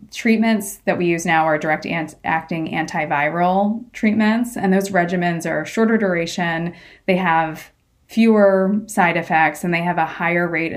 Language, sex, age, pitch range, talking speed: English, female, 20-39, 165-200 Hz, 145 wpm